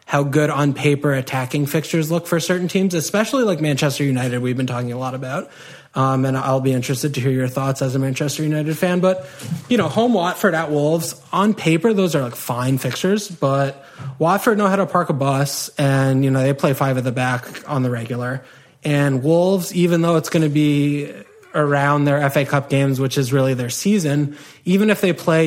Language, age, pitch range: English, 20-39, 135-165 Hz